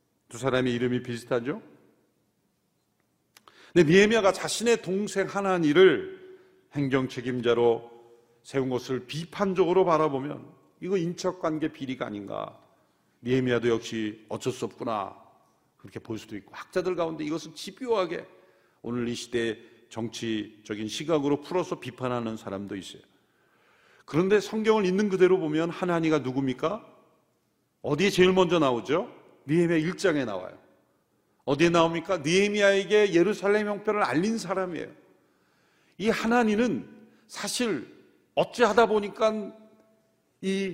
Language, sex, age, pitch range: Korean, male, 40-59, 130-210 Hz